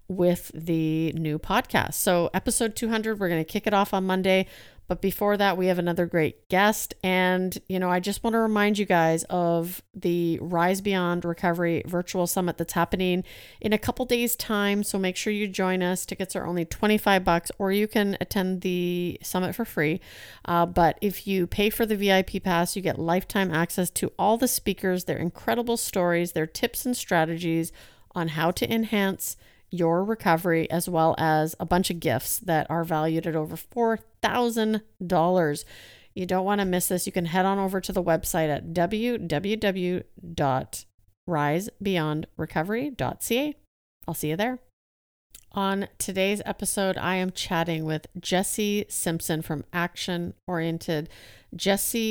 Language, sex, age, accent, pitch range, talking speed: English, female, 40-59, American, 165-200 Hz, 165 wpm